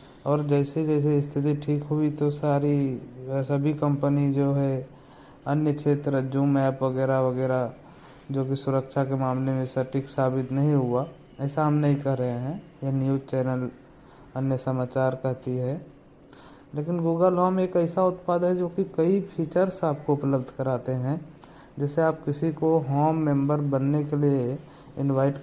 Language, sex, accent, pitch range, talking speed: Hindi, male, native, 135-155 Hz, 155 wpm